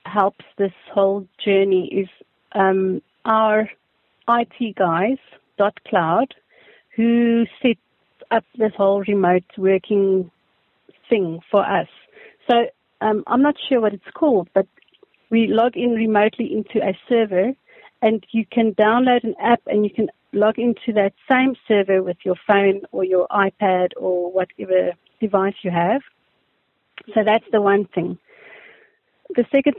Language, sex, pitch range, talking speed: English, female, 205-275 Hz, 140 wpm